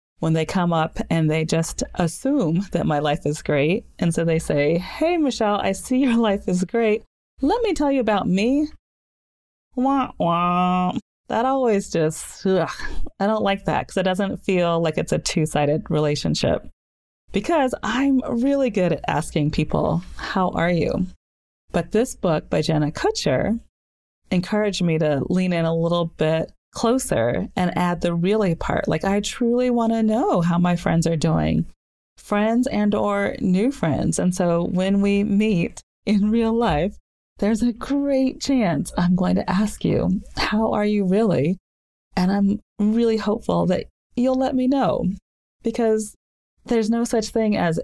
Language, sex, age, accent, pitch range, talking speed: English, female, 30-49, American, 165-225 Hz, 165 wpm